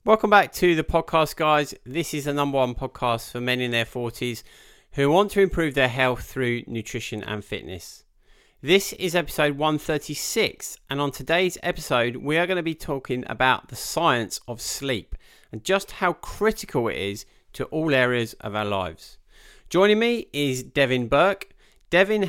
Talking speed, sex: 170 wpm, male